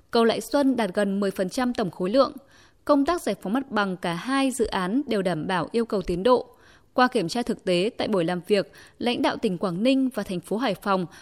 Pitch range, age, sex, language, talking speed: 200-275 Hz, 20-39, female, Vietnamese, 240 wpm